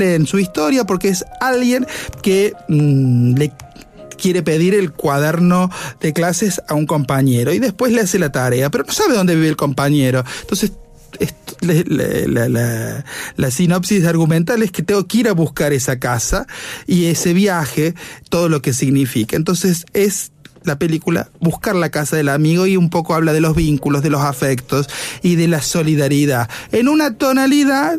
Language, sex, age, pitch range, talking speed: Spanish, male, 30-49, 145-205 Hz, 170 wpm